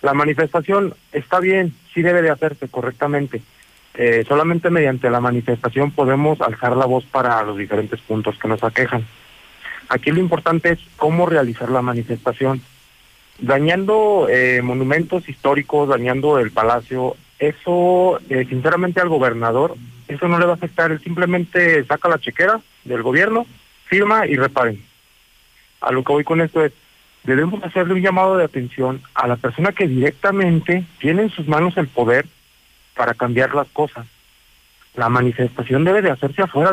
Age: 40-59